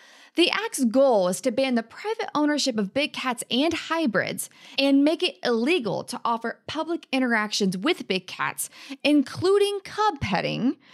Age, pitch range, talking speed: 20-39, 245-320 Hz, 155 wpm